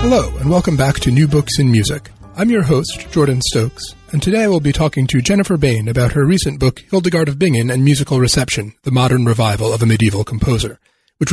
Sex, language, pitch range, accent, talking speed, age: male, English, 130-180 Hz, American, 215 wpm, 30-49